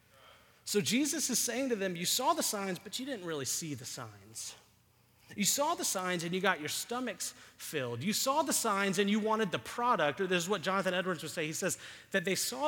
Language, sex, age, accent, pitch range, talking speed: English, male, 30-49, American, 170-235 Hz, 230 wpm